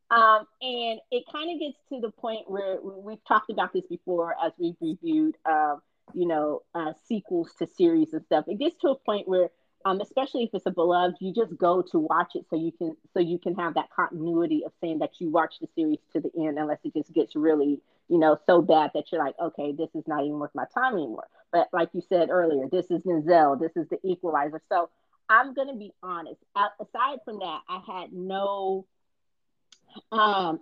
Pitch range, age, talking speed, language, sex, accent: 170-225 Hz, 30-49, 215 wpm, English, female, American